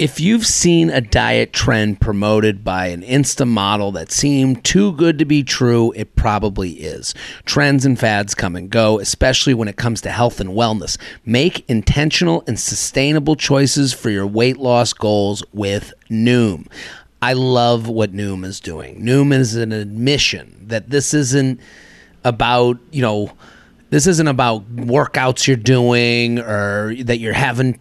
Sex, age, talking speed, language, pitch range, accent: male, 30-49, 160 wpm, English, 110-140 Hz, American